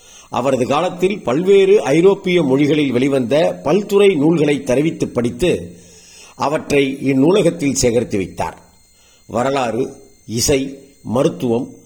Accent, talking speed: native, 85 wpm